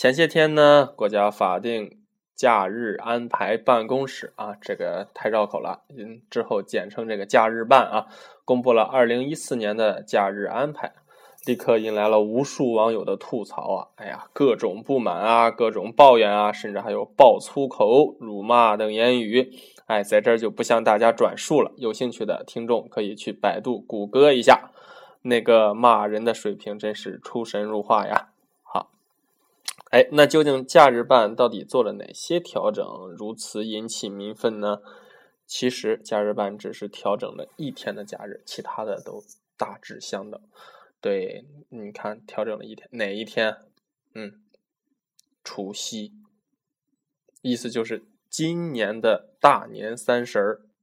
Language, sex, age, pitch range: Chinese, male, 10-29, 110-155 Hz